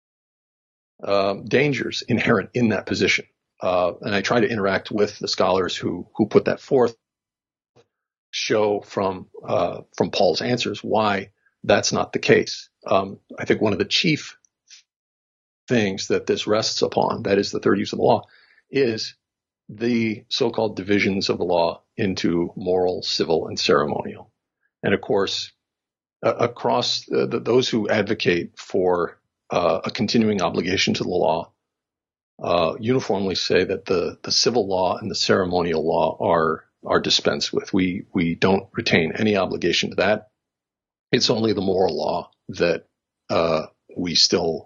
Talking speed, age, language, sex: 155 wpm, 50-69, English, male